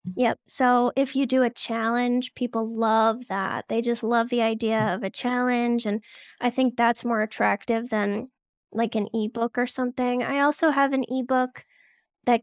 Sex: female